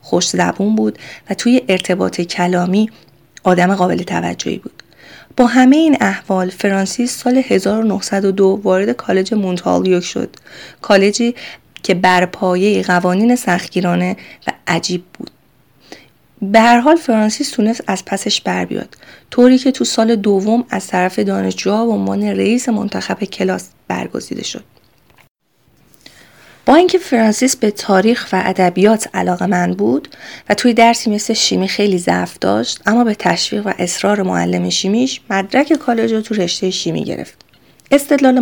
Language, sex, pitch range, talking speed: Persian, female, 185-235 Hz, 135 wpm